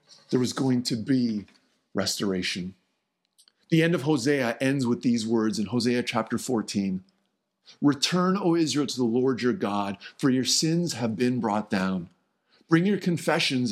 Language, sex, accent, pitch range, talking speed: English, male, American, 110-160 Hz, 155 wpm